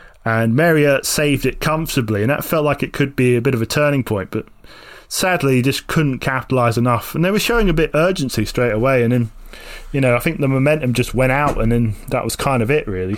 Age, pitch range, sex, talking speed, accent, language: 20-39, 115-145 Hz, male, 240 wpm, British, English